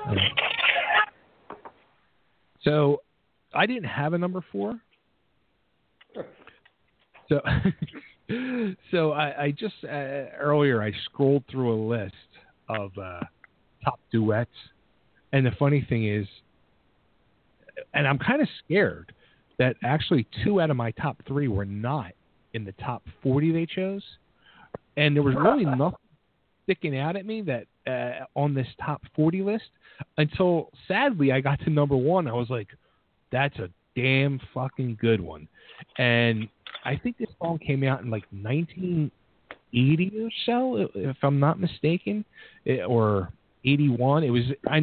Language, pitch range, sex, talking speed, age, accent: English, 120-160 Hz, male, 140 wpm, 40-59, American